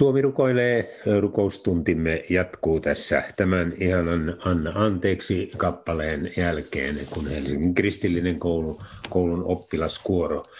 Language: Finnish